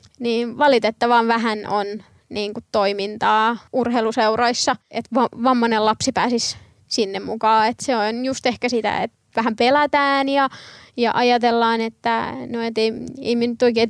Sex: female